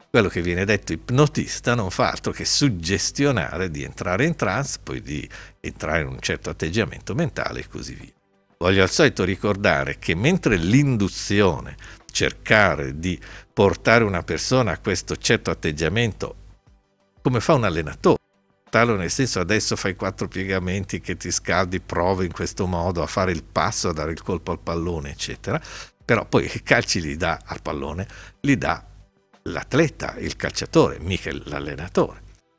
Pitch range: 85-115 Hz